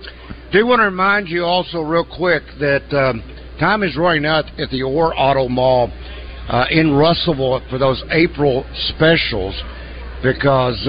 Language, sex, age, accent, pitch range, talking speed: English, male, 60-79, American, 115-165 Hz, 150 wpm